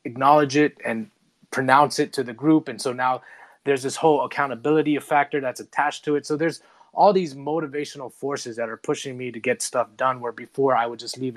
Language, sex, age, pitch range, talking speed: English, male, 20-39, 120-145 Hz, 210 wpm